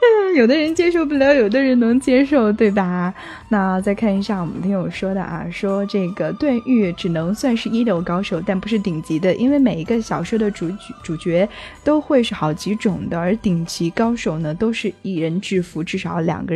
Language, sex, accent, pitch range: Chinese, female, native, 185-240 Hz